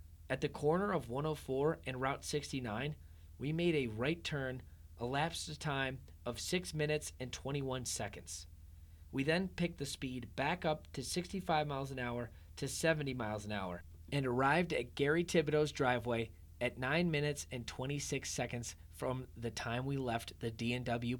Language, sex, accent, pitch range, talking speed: English, male, American, 95-150 Hz, 160 wpm